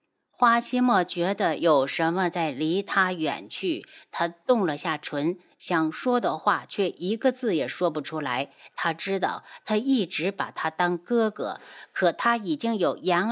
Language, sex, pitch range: Chinese, female, 175-255 Hz